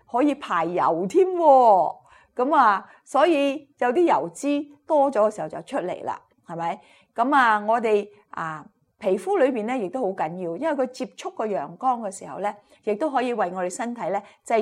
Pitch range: 200-280 Hz